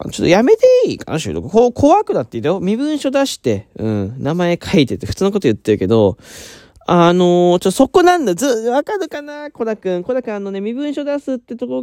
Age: 20-39